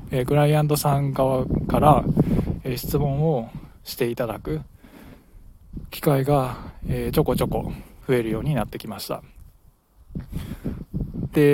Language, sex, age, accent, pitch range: Japanese, male, 20-39, native, 115-140 Hz